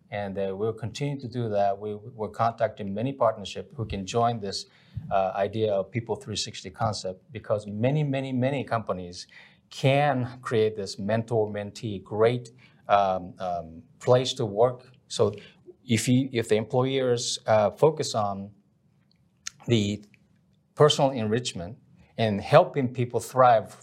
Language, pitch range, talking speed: English, 105-130 Hz, 130 wpm